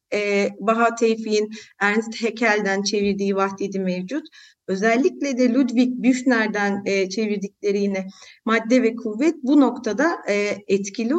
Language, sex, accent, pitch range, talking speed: Turkish, female, native, 215-295 Hz, 100 wpm